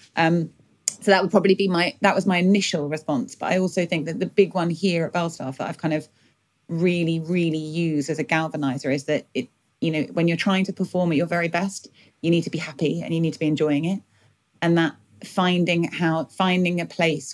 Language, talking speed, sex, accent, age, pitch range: English, 230 wpm, female, British, 30-49, 150-175 Hz